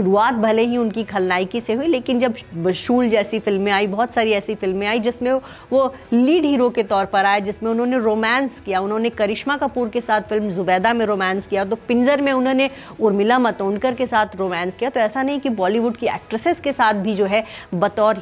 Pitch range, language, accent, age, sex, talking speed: 185-235 Hz, English, Indian, 30-49, female, 210 wpm